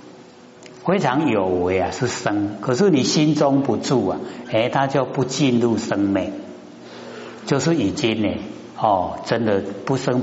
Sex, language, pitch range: male, Chinese, 100-155 Hz